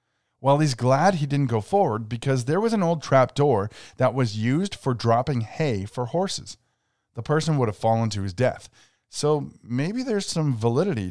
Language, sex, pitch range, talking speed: English, male, 110-140 Hz, 190 wpm